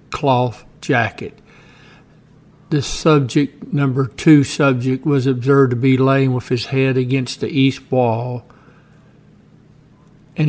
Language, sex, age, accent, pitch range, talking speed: English, male, 60-79, American, 130-145 Hz, 115 wpm